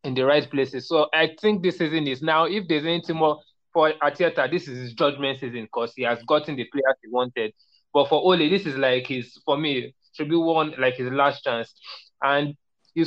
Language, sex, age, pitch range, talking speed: English, male, 20-39, 130-155 Hz, 220 wpm